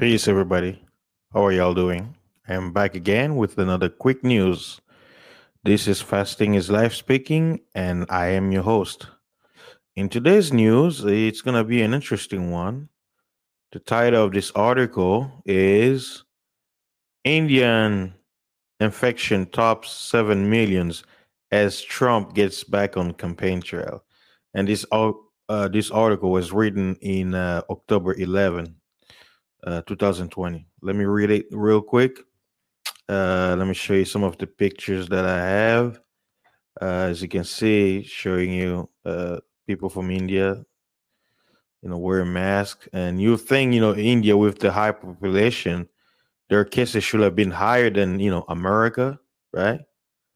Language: English